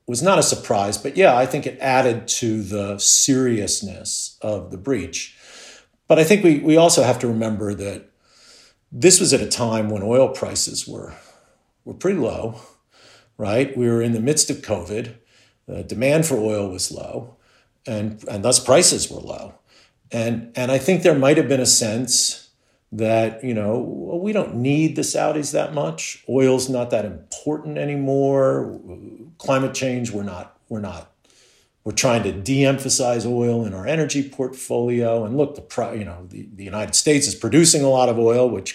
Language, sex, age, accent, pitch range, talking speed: English, male, 50-69, American, 105-140 Hz, 175 wpm